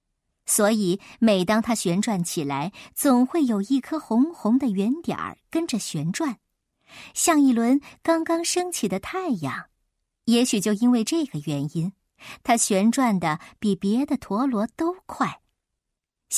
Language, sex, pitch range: Chinese, male, 190-285 Hz